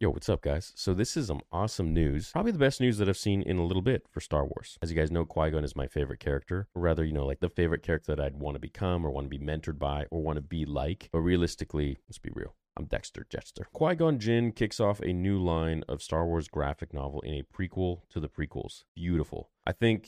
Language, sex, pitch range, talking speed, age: English, male, 75-100 Hz, 255 wpm, 30-49